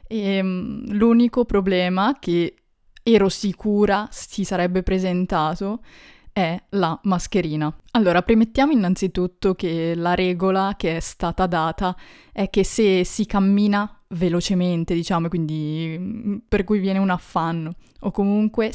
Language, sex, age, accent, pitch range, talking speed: Italian, female, 20-39, native, 175-215 Hz, 115 wpm